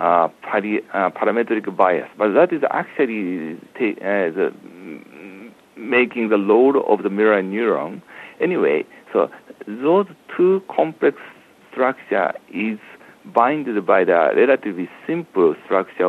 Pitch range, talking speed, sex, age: 110-165 Hz, 110 wpm, male, 60-79